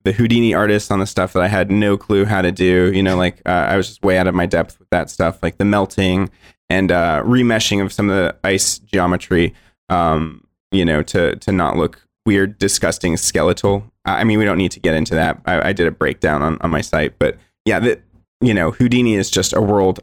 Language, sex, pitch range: English, male, 90-105 Hz